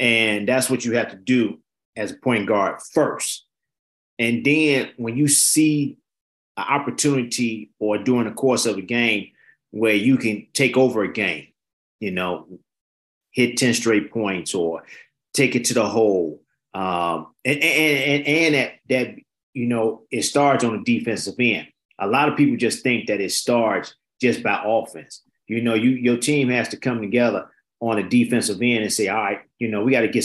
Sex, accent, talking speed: male, American, 190 wpm